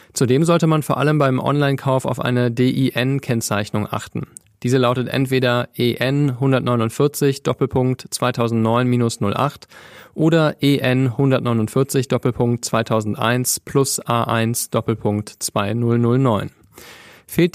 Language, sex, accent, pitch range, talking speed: German, male, German, 115-140 Hz, 70 wpm